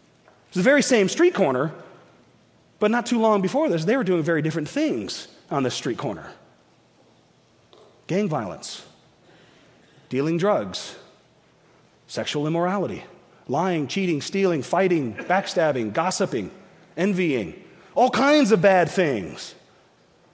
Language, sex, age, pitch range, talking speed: English, male, 40-59, 195-275 Hz, 115 wpm